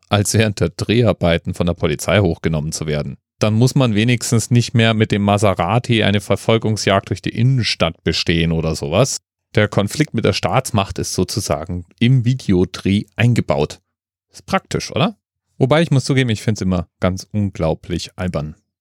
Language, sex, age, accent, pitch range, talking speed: German, male, 30-49, German, 95-120 Hz, 165 wpm